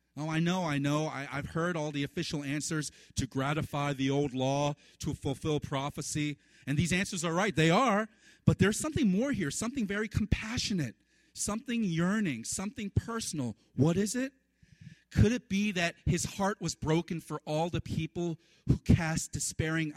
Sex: male